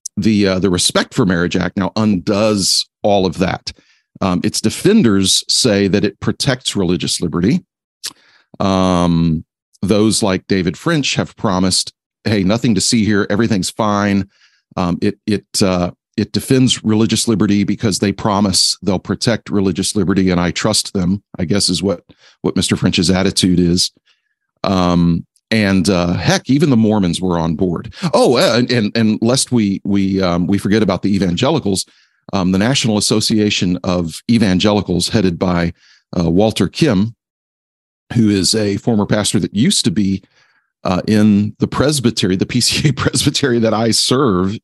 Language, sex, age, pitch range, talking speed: English, male, 40-59, 95-110 Hz, 155 wpm